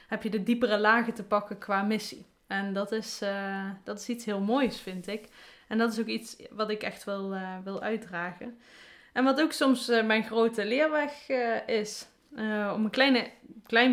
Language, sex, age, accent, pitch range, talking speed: Dutch, female, 20-39, Dutch, 195-230 Hz, 195 wpm